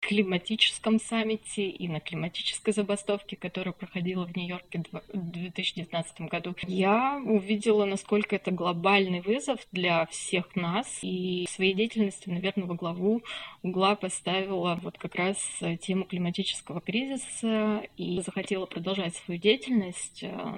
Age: 20-39